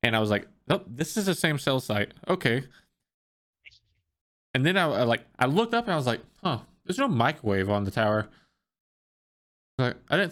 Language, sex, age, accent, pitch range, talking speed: English, male, 20-39, American, 110-150 Hz, 200 wpm